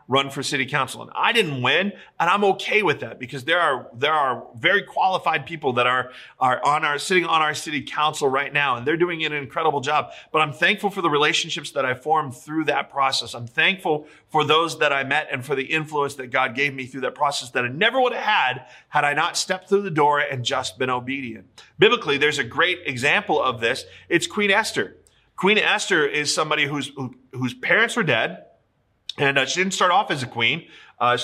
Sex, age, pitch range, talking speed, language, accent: male, 40-59, 135-175 Hz, 225 wpm, English, American